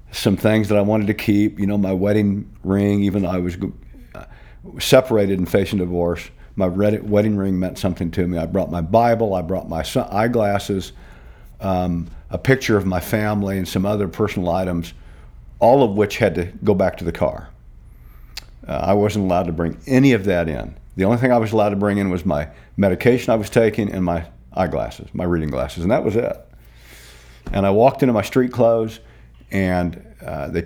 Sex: male